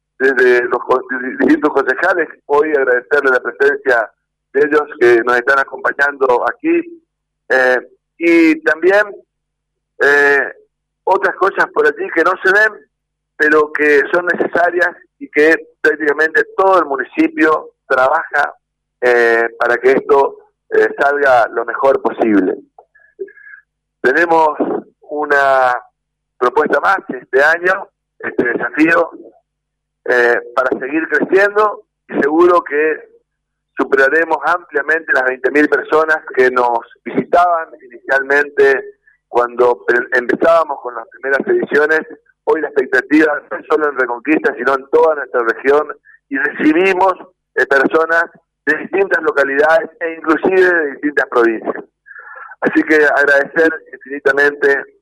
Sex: male